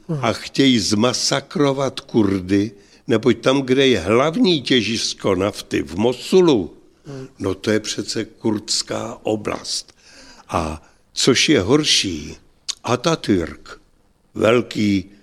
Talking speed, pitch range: 100 wpm, 100-130 Hz